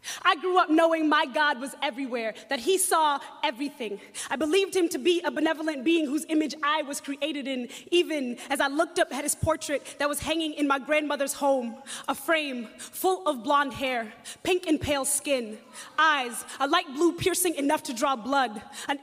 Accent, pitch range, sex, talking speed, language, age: American, 275-320 Hz, female, 190 wpm, English, 20-39